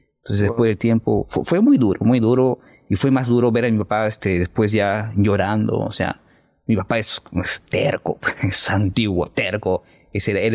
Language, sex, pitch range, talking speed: Spanish, male, 105-135 Hz, 200 wpm